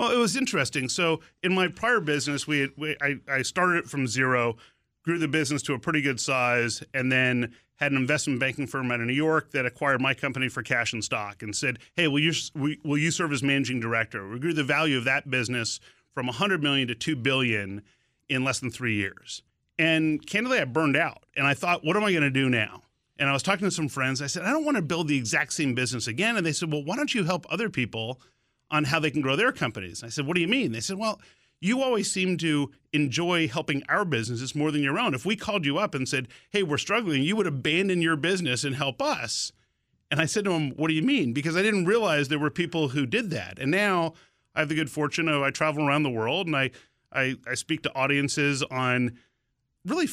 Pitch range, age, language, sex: 130-165 Hz, 40-59, English, male